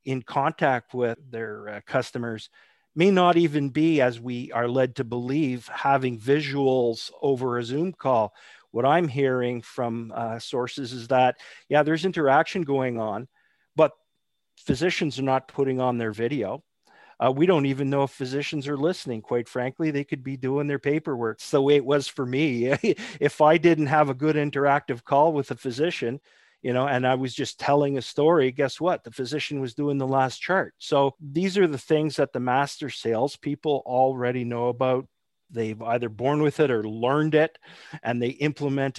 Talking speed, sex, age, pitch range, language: 180 wpm, male, 50-69, 120-145 Hz, English